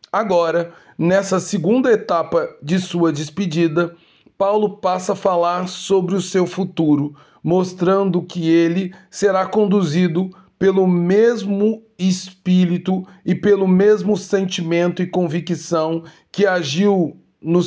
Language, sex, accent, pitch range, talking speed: Portuguese, male, Brazilian, 165-195 Hz, 110 wpm